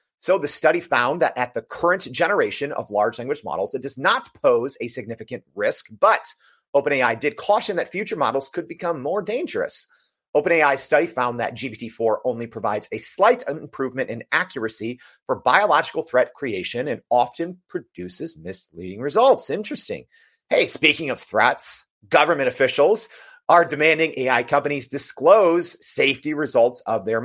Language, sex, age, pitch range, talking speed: English, male, 30-49, 125-190 Hz, 150 wpm